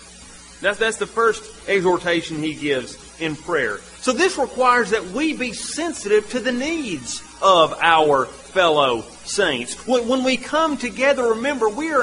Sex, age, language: male, 40-59, English